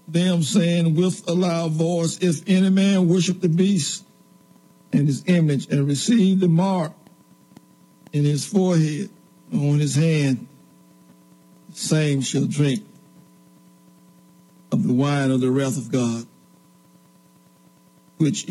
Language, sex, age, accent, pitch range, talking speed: English, male, 60-79, American, 135-180 Hz, 125 wpm